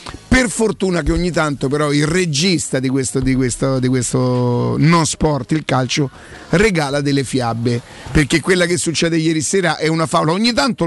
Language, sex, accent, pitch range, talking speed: Italian, male, native, 140-170 Hz, 175 wpm